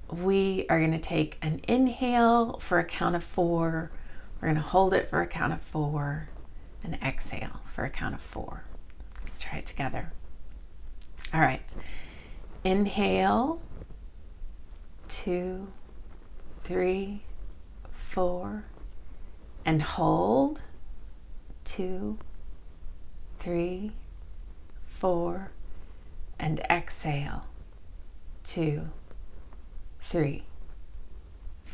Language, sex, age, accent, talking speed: English, female, 30-49, American, 85 wpm